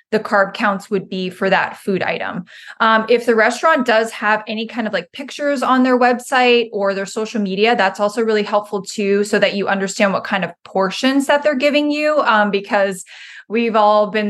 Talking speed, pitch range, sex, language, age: 205 wpm, 200-240 Hz, female, English, 20-39